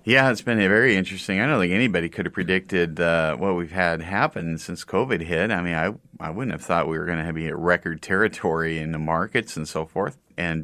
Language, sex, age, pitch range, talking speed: English, male, 40-59, 80-95 Hz, 245 wpm